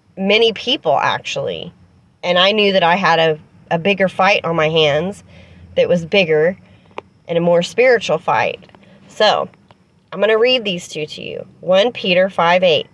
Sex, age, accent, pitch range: female, 30-49, American, 175-230 Hz